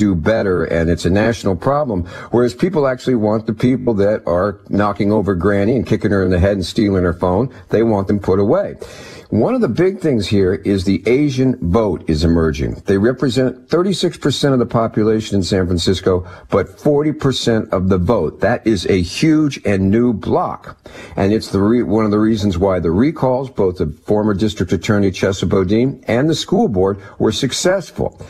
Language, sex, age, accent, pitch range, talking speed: English, male, 60-79, American, 95-125 Hz, 190 wpm